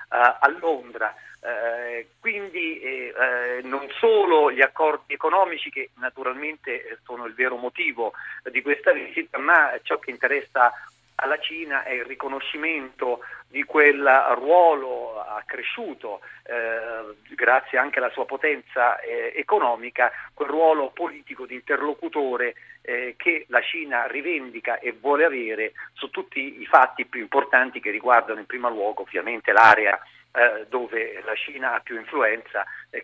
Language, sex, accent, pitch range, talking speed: Italian, male, native, 125-175 Hz, 135 wpm